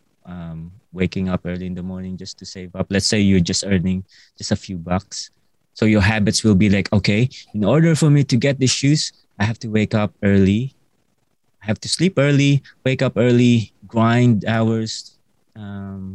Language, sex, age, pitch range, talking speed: English, male, 20-39, 100-130 Hz, 195 wpm